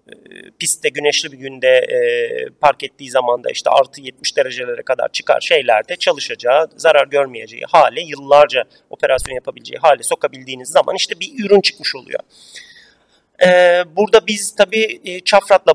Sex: male